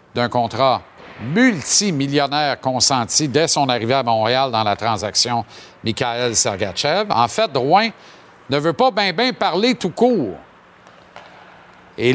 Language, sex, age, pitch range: French, male, 50-69, 125-190 Hz